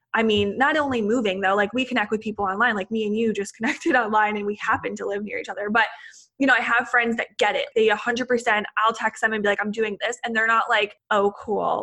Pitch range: 200-235 Hz